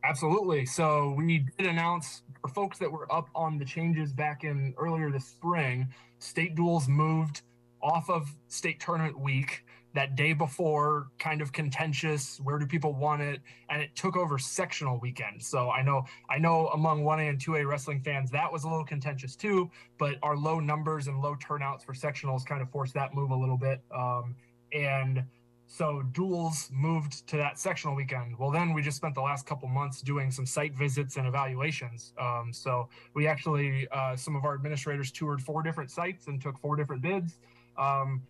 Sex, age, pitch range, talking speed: male, 20-39, 135-155 Hz, 190 wpm